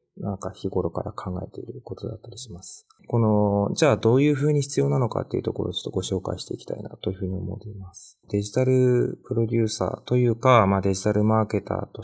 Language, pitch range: Japanese, 100-120 Hz